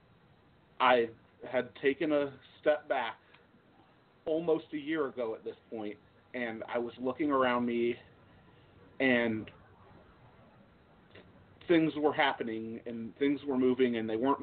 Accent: American